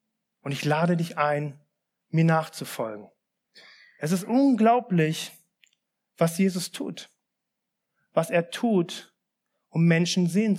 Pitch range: 170-210 Hz